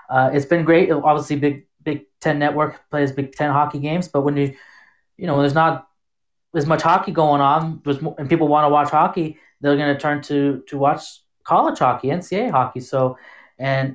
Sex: male